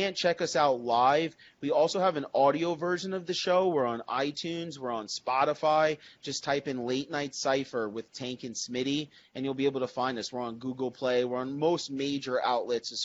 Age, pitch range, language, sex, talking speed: 30-49, 125-165 Hz, English, male, 220 wpm